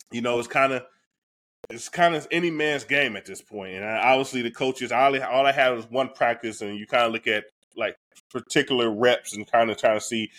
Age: 20-39